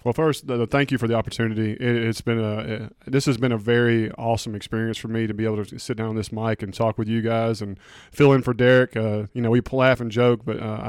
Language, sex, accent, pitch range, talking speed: English, male, American, 115-140 Hz, 280 wpm